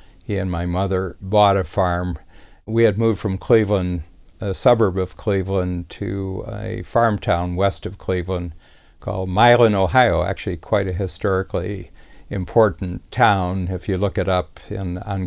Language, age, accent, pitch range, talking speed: English, 60-79, American, 90-105 Hz, 150 wpm